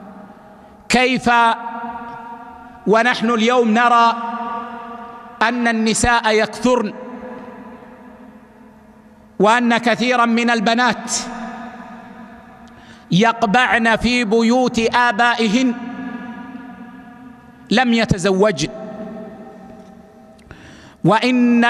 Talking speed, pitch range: 50 wpm, 225-245 Hz